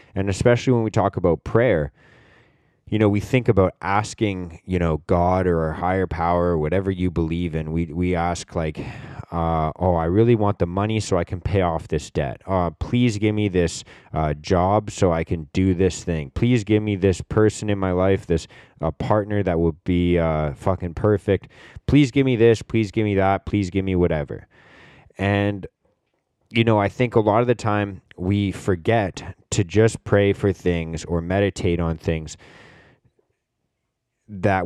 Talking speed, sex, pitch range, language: 185 wpm, male, 85-105 Hz, English